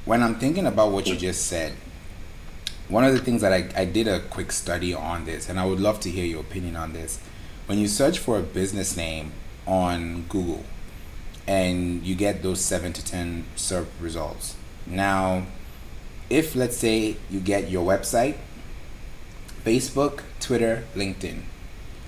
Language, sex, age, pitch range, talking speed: English, male, 30-49, 85-105 Hz, 165 wpm